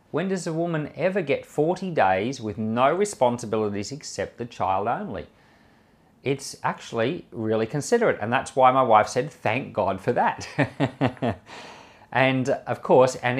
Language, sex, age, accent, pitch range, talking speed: English, male, 40-59, Australian, 100-125 Hz, 150 wpm